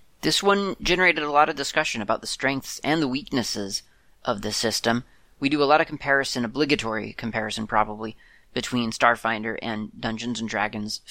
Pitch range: 110-125 Hz